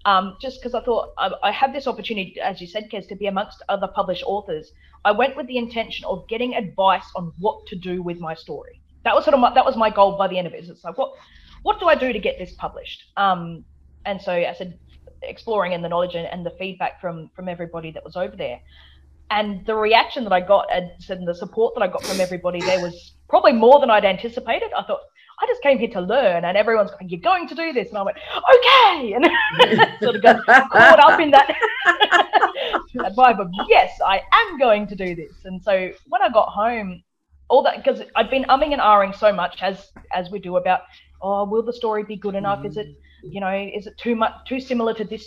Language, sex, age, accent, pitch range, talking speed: English, female, 20-39, Australian, 180-245 Hz, 235 wpm